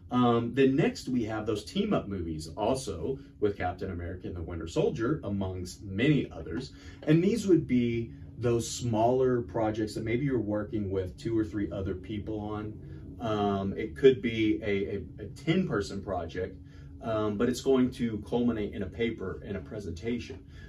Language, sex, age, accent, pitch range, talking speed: English, male, 30-49, American, 90-115 Hz, 170 wpm